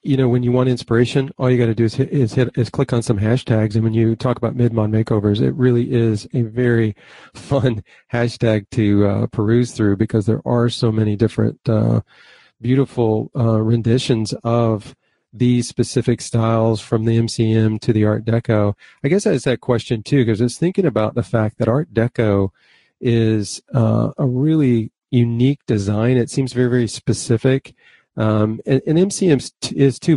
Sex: male